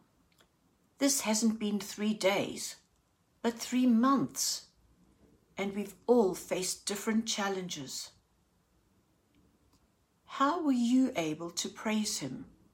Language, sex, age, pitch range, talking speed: English, female, 60-79, 190-230 Hz, 100 wpm